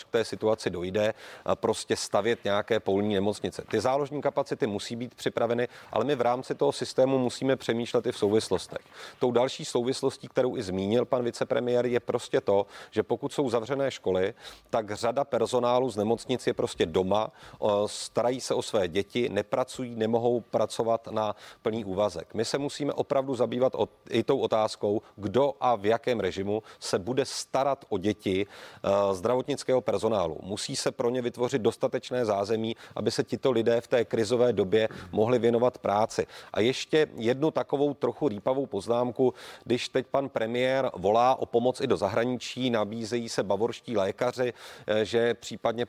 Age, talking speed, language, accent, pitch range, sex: 40-59, 160 wpm, Czech, native, 110-130 Hz, male